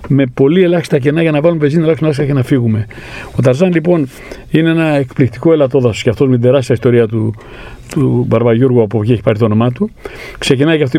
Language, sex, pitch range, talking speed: Greek, male, 125-155 Hz, 210 wpm